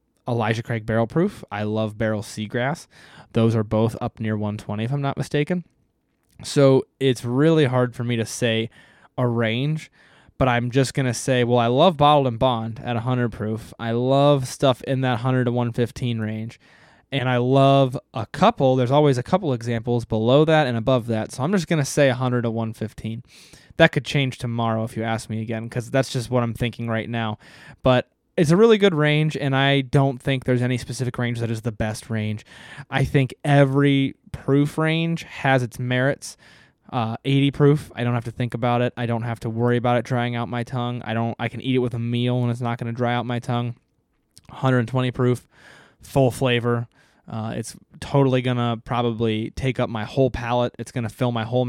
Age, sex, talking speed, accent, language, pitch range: 20-39, male, 210 wpm, American, English, 115-135 Hz